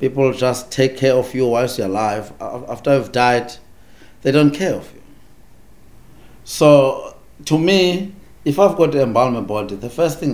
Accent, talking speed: South African, 175 wpm